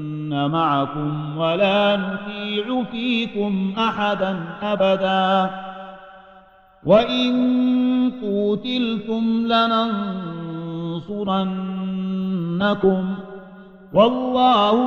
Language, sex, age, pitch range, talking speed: Arabic, male, 50-69, 170-210 Hz, 40 wpm